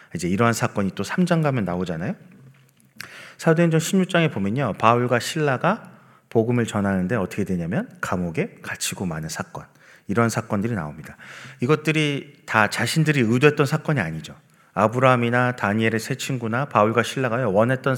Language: Korean